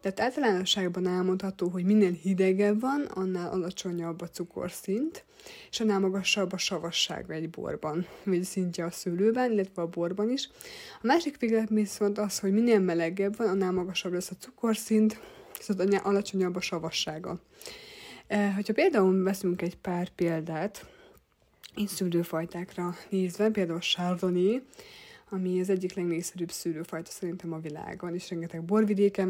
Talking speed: 135 wpm